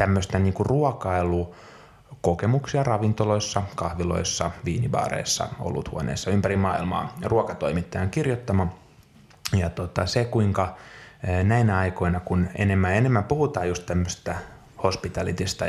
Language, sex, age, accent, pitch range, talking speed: Finnish, male, 20-39, native, 90-110 Hz, 95 wpm